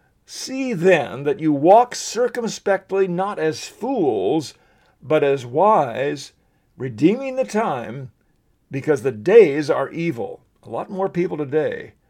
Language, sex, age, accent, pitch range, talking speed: English, male, 50-69, American, 140-195 Hz, 125 wpm